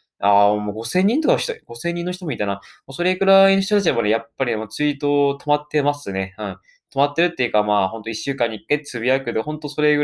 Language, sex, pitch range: Japanese, male, 115-155 Hz